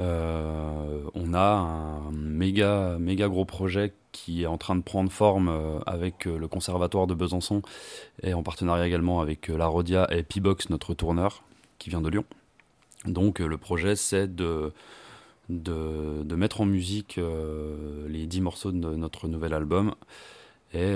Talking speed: 155 wpm